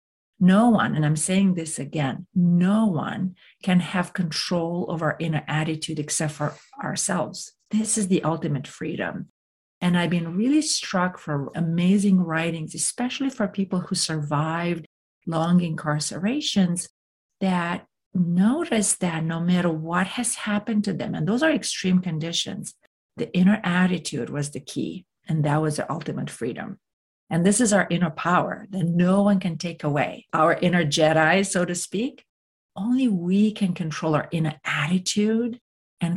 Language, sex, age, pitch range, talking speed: English, female, 50-69, 160-200 Hz, 155 wpm